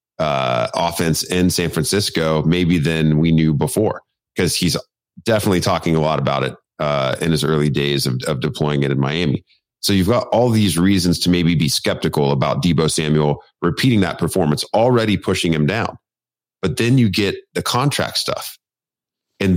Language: English